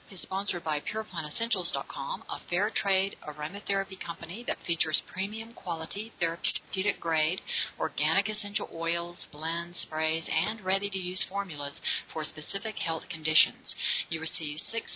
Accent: American